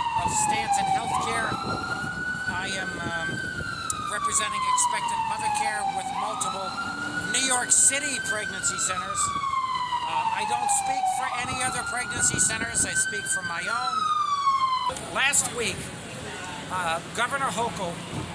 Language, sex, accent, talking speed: English, male, American, 120 wpm